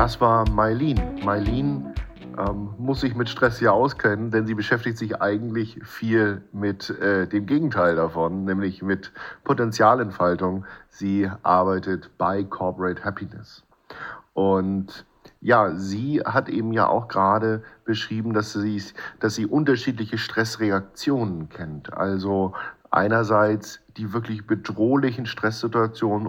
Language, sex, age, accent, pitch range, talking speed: German, male, 50-69, German, 100-115 Hz, 120 wpm